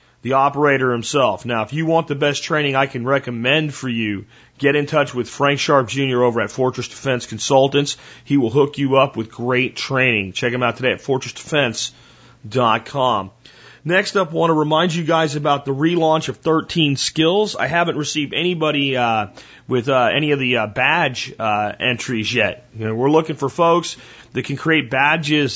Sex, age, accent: male, 40-59, American